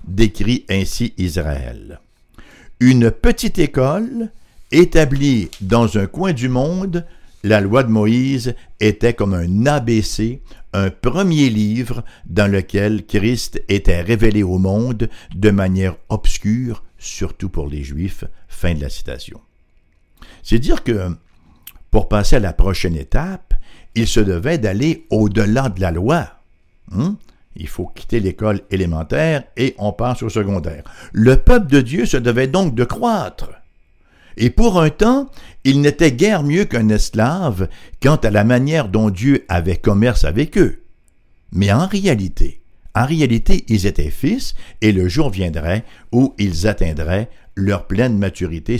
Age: 60-79